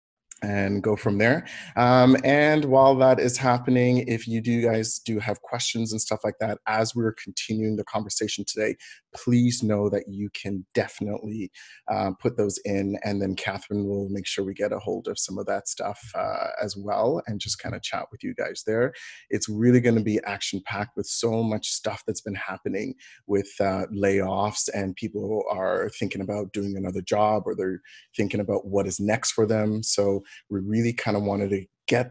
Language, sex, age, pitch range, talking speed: English, male, 30-49, 100-115 Hz, 200 wpm